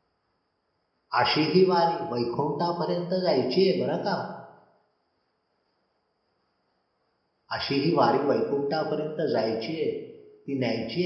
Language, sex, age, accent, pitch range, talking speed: Marathi, male, 50-69, native, 105-155 Hz, 85 wpm